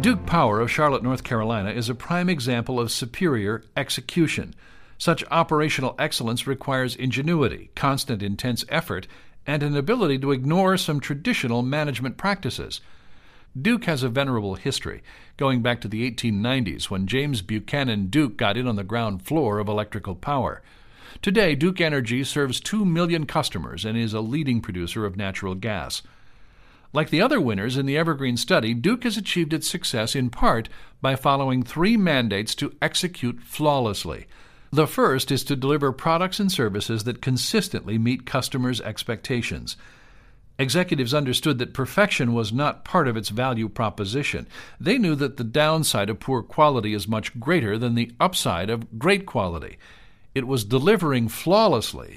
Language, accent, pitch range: English, American, 110-150 Hz